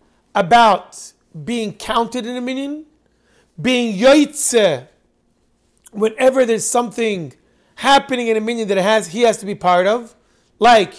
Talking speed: 135 wpm